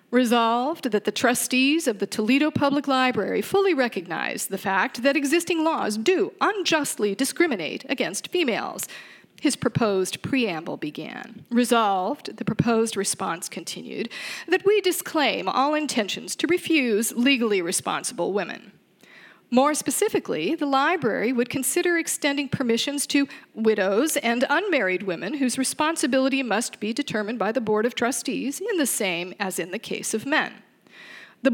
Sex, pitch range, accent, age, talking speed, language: female, 205-290 Hz, American, 40-59, 140 wpm, English